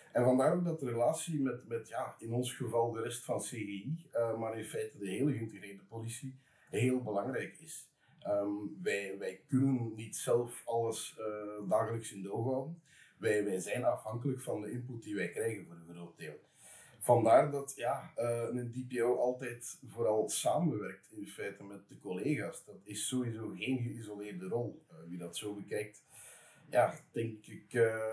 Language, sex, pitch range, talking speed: English, male, 105-130 Hz, 175 wpm